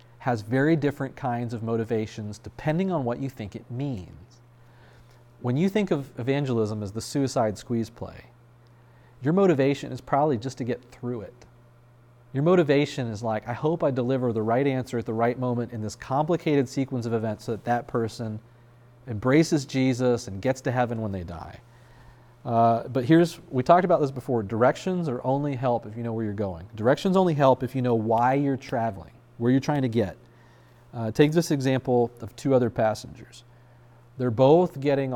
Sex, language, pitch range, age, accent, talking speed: male, English, 115-130 Hz, 40-59, American, 185 wpm